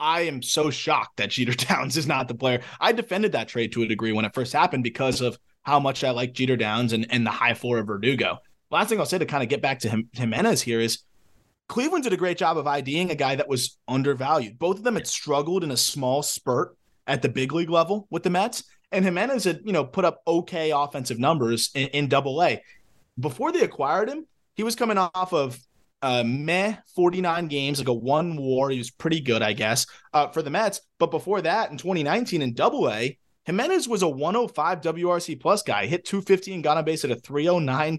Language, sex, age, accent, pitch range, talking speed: English, male, 20-39, American, 125-180 Hz, 225 wpm